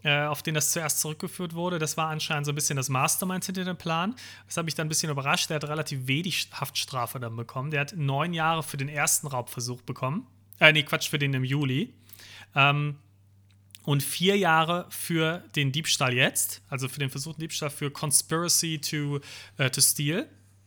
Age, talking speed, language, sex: 30-49, 190 wpm, German, male